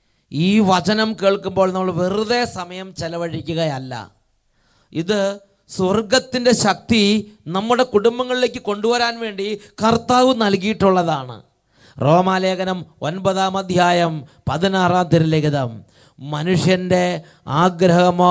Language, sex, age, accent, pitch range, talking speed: English, male, 30-49, Indian, 165-210 Hz, 80 wpm